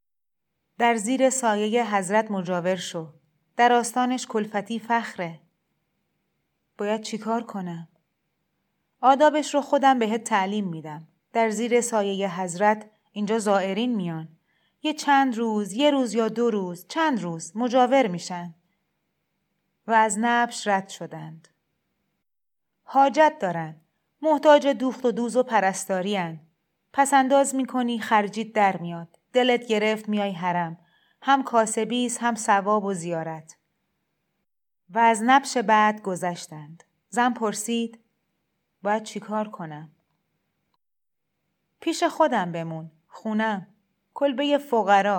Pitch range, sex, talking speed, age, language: 180-240 Hz, female, 110 wpm, 30-49, Persian